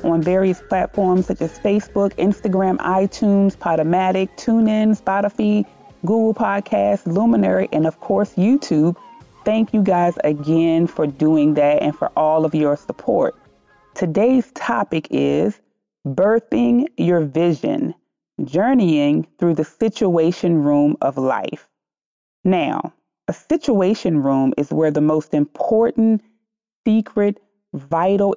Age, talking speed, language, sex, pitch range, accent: 30-49, 115 wpm, English, female, 155-210 Hz, American